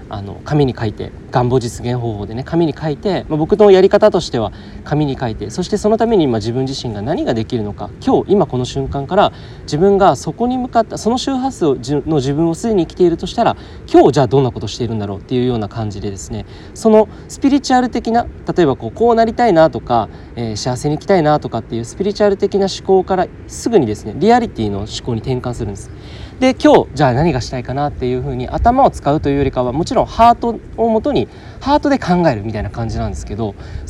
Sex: male